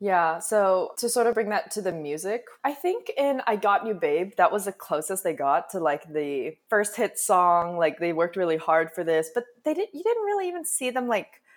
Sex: female